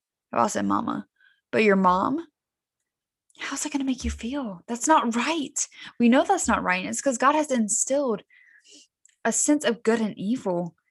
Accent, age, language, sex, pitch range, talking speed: American, 10-29, English, female, 220-300 Hz, 175 wpm